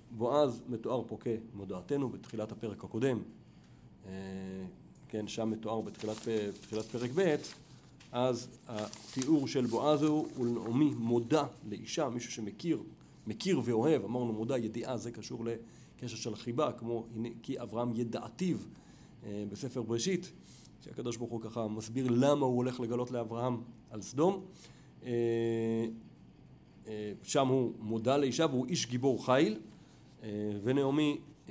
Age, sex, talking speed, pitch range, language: 40-59, male, 115 wpm, 110-130 Hz, Hebrew